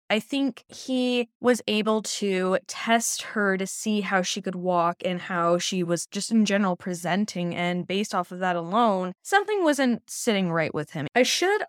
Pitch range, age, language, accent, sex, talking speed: 180-240 Hz, 10-29, English, American, female, 185 wpm